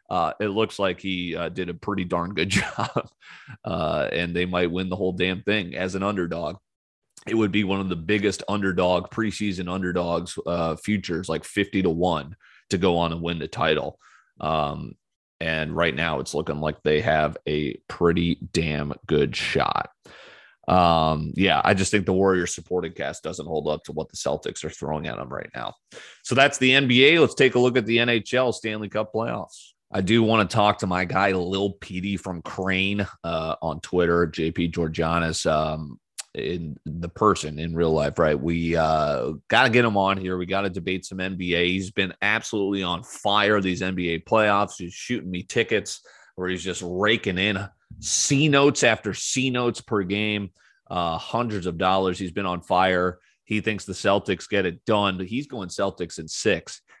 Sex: male